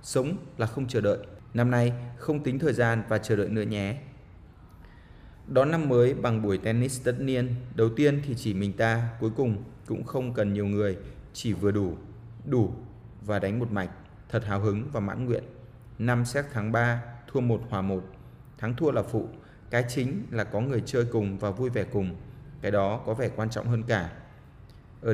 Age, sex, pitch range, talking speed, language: 20-39, male, 105-125 Hz, 200 wpm, Vietnamese